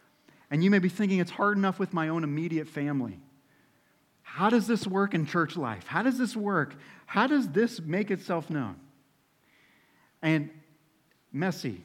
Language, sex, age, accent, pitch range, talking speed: English, male, 40-59, American, 135-180 Hz, 160 wpm